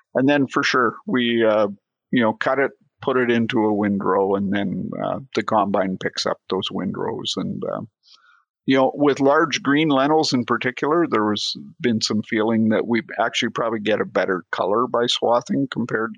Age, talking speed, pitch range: 50-69, 185 wpm, 105-135 Hz